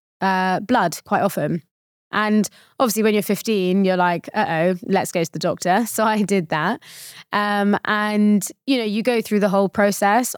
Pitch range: 180-220 Hz